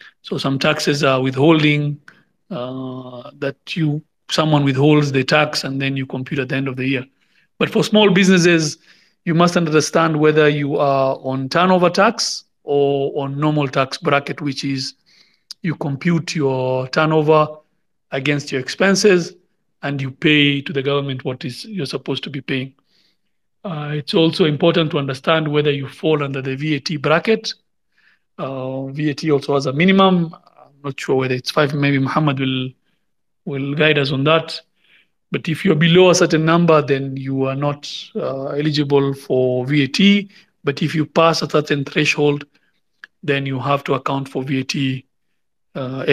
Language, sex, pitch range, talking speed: English, male, 135-165 Hz, 165 wpm